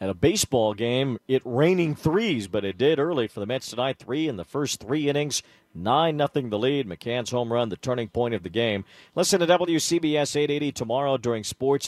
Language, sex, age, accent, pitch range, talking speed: English, male, 50-69, American, 105-135 Hz, 205 wpm